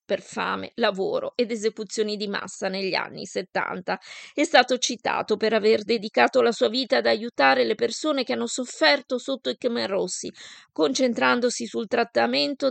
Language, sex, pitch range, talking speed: Italian, female, 210-255 Hz, 150 wpm